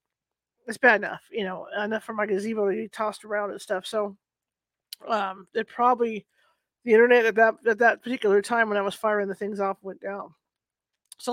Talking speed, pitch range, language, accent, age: 195 wpm, 210-255 Hz, English, American, 40-59